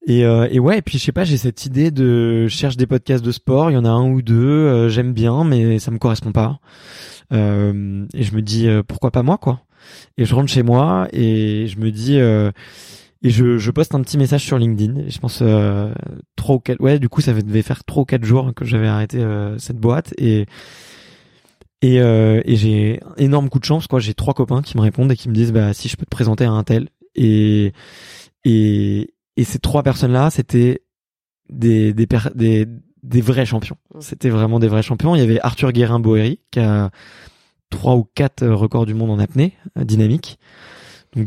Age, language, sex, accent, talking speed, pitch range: 20-39, French, male, French, 215 wpm, 110-135 Hz